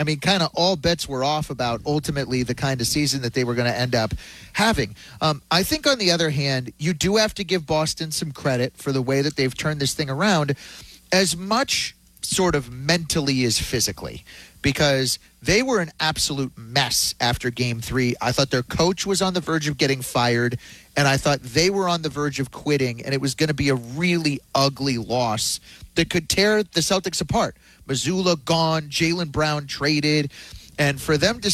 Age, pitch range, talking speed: 30-49, 130-165 Hz, 205 wpm